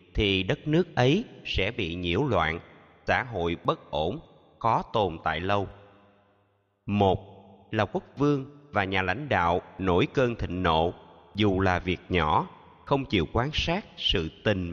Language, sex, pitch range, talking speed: Vietnamese, male, 95-125 Hz, 155 wpm